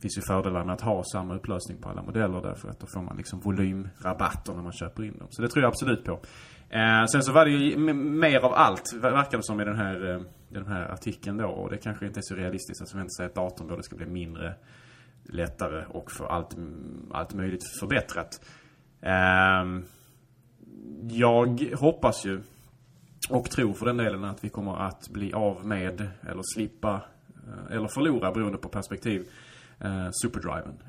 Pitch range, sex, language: 95-115 Hz, male, Swedish